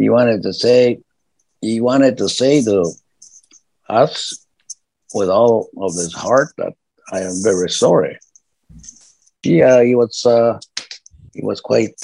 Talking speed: 135 wpm